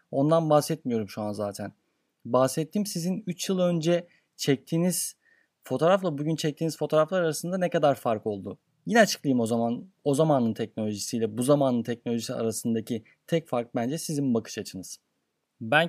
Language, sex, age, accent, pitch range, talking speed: Turkish, male, 30-49, native, 130-175 Hz, 145 wpm